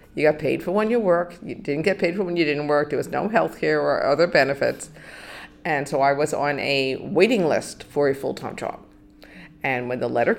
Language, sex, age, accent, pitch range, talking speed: English, female, 50-69, American, 145-185 Hz, 230 wpm